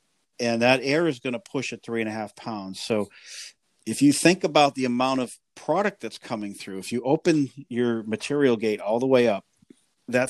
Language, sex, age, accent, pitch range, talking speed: English, male, 50-69, American, 105-130 Hz, 210 wpm